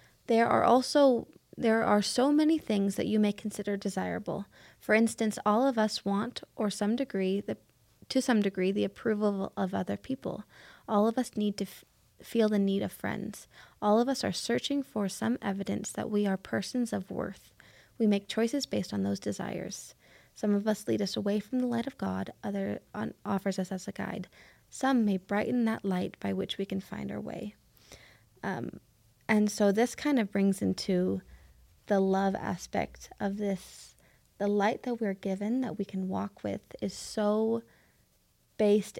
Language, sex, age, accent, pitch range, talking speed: English, female, 20-39, American, 195-225 Hz, 185 wpm